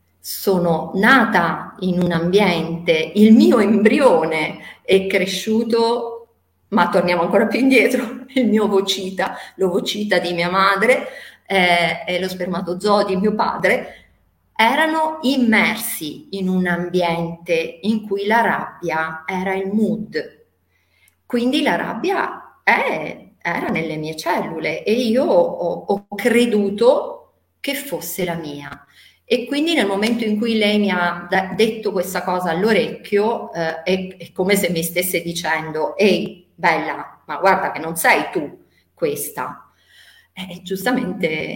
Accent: native